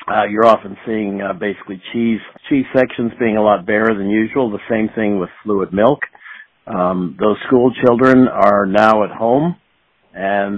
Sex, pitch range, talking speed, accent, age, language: male, 100-120 Hz, 170 wpm, American, 60-79, English